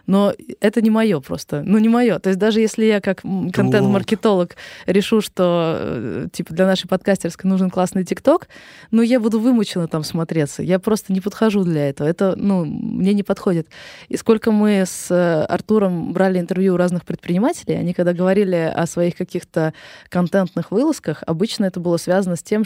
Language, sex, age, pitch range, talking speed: Russian, female, 20-39, 165-200 Hz, 175 wpm